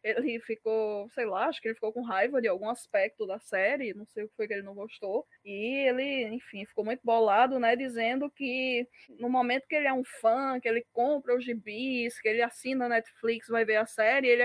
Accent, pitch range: Brazilian, 225-280 Hz